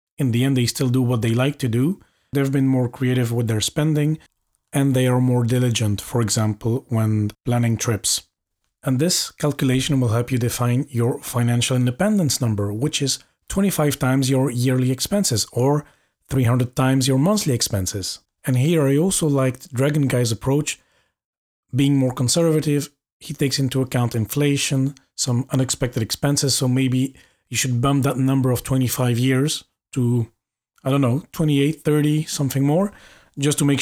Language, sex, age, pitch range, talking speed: English, male, 40-59, 120-150 Hz, 165 wpm